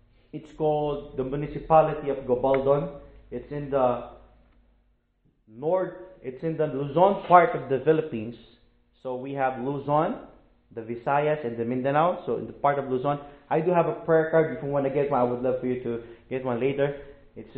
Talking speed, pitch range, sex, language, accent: 190 wpm, 125-165 Hz, male, English, Filipino